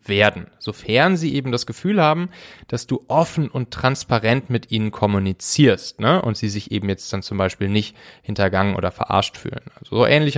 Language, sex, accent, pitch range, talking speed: German, male, German, 100-125 Hz, 185 wpm